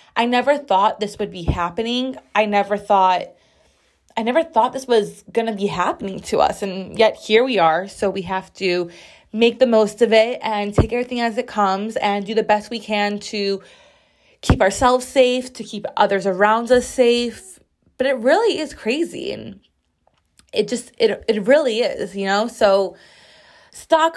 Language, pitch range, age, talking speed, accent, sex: English, 200-245 Hz, 20-39, 180 wpm, American, female